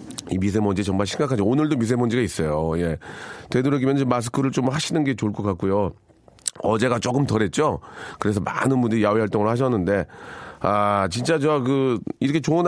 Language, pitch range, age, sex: Korean, 100-140 Hz, 40-59, male